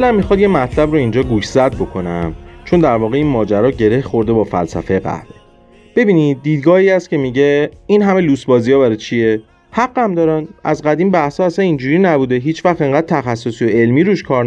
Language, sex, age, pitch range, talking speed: Persian, male, 40-59, 110-160 Hz, 195 wpm